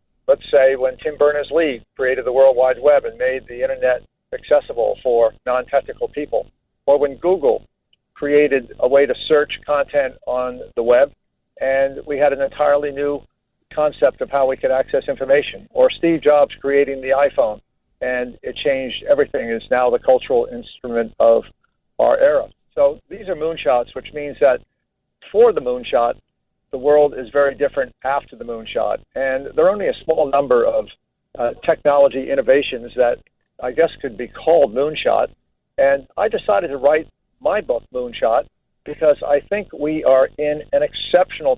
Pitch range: 135-210 Hz